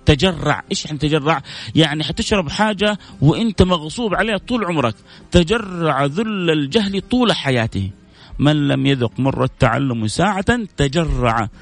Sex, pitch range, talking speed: male, 130-160 Hz, 120 wpm